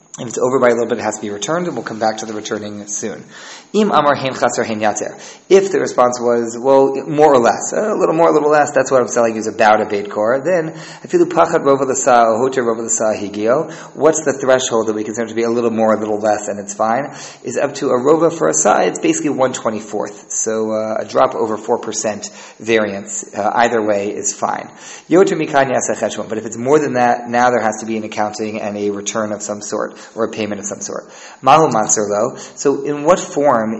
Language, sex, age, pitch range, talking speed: English, male, 30-49, 110-140 Hz, 200 wpm